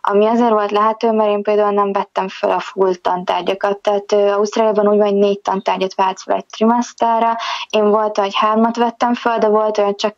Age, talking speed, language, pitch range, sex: 20-39, 195 wpm, Hungarian, 200-225 Hz, female